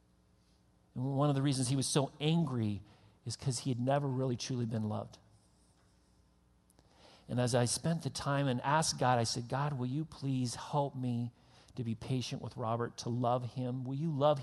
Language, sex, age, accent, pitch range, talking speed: English, male, 40-59, American, 120-180 Hz, 190 wpm